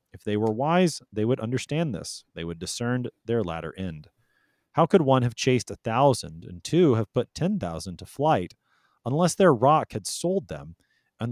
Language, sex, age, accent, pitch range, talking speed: English, male, 30-49, American, 100-140 Hz, 190 wpm